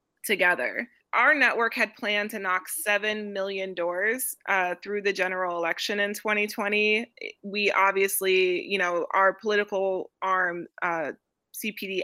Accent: American